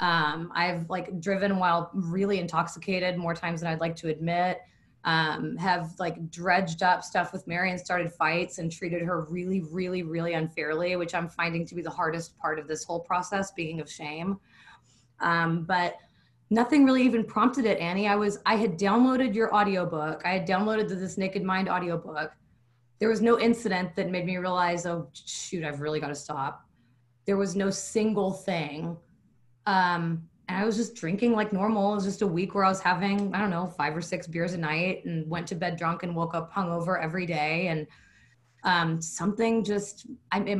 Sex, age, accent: female, 20-39, American